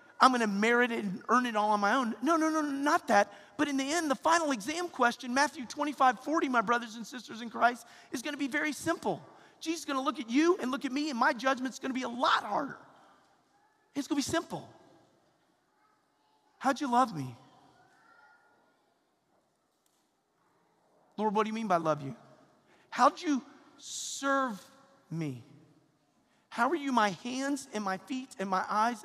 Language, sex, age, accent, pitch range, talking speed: English, male, 40-59, American, 200-275 Hz, 190 wpm